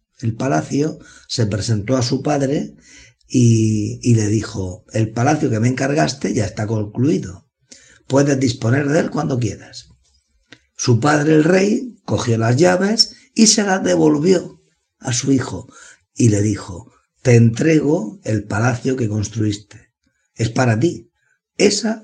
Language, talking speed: Spanish, 140 wpm